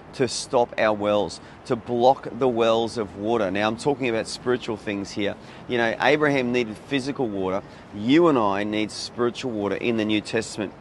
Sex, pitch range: male, 105-125 Hz